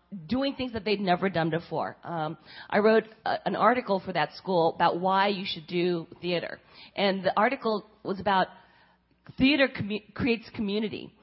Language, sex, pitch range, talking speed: English, female, 185-230 Hz, 155 wpm